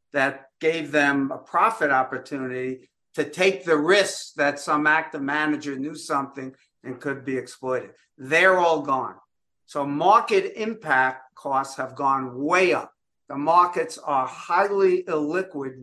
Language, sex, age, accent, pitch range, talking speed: English, male, 50-69, American, 140-170 Hz, 135 wpm